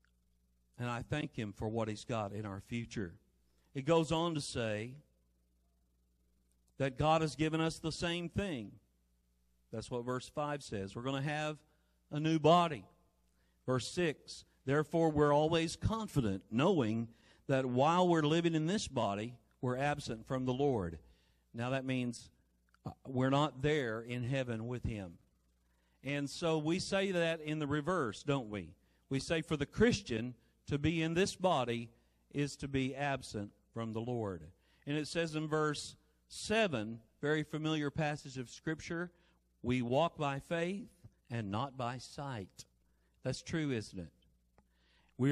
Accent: American